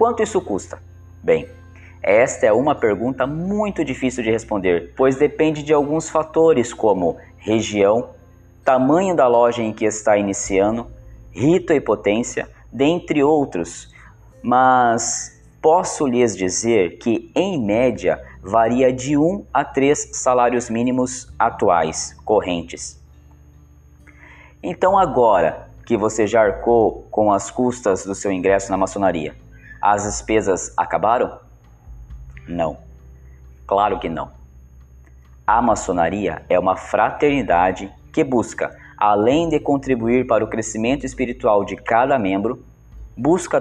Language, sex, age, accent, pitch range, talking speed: Portuguese, male, 20-39, Brazilian, 90-135 Hz, 120 wpm